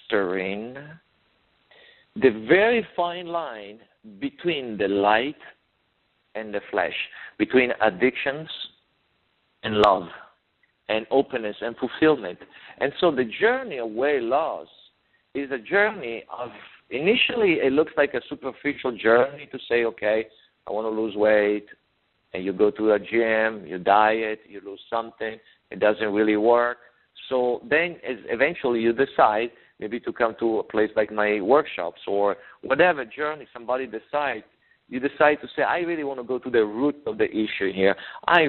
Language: English